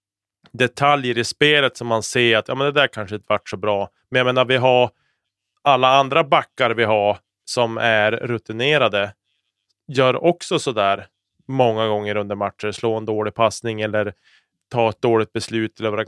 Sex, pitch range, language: male, 105-125 Hz, Swedish